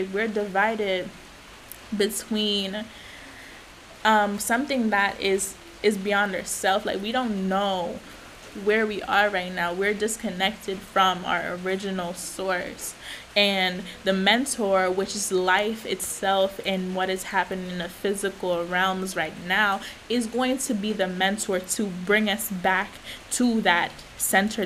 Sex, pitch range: female, 185-210 Hz